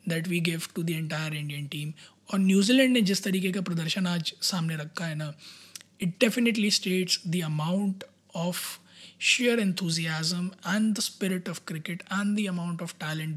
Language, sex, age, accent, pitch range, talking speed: Hindi, male, 20-39, native, 170-200 Hz, 165 wpm